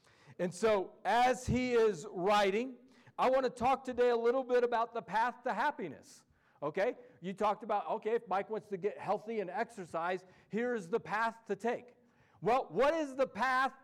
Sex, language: male, English